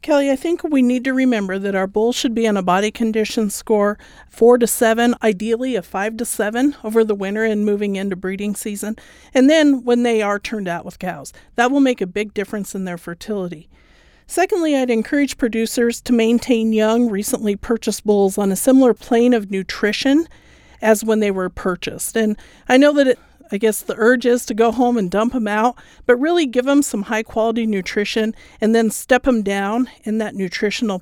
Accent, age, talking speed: American, 50-69, 205 wpm